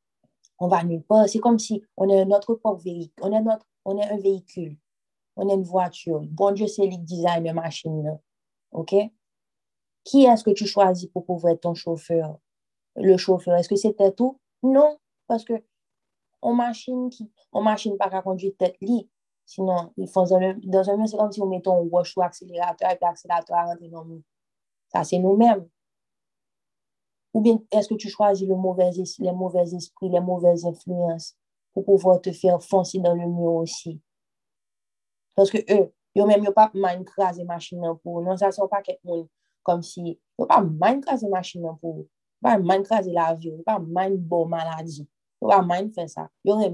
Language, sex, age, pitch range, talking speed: French, female, 30-49, 175-210 Hz, 185 wpm